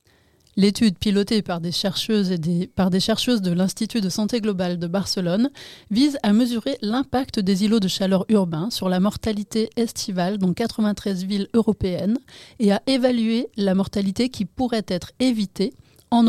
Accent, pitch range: French, 190-225 Hz